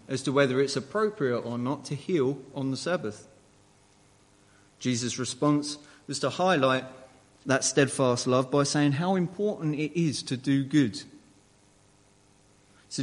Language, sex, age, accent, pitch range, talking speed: English, male, 30-49, British, 105-155 Hz, 140 wpm